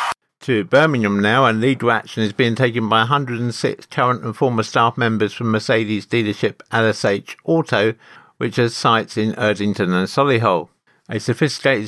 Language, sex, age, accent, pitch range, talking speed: English, male, 50-69, British, 105-130 Hz, 150 wpm